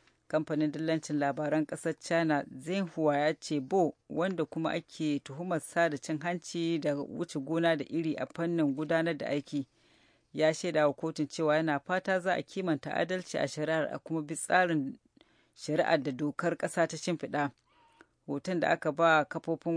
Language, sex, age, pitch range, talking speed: English, female, 40-59, 150-170 Hz, 145 wpm